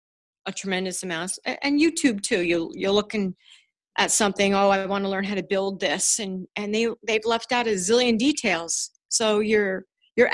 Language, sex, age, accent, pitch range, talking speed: English, female, 40-59, American, 185-240 Hz, 180 wpm